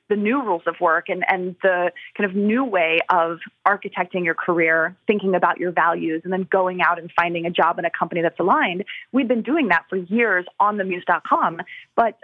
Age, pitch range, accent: 30-49, 185-225 Hz, American